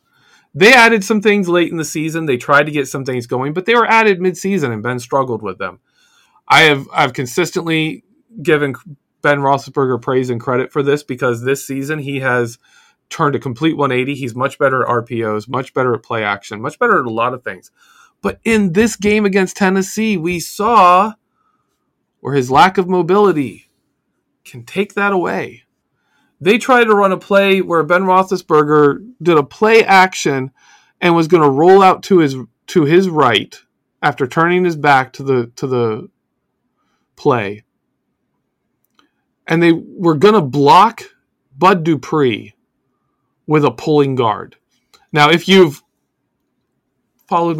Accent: American